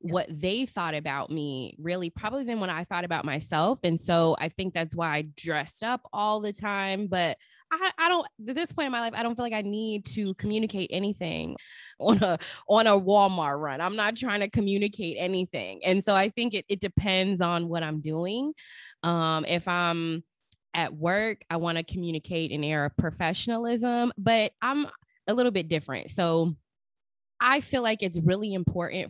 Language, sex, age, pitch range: English, female, 20-39, 165-210 Hz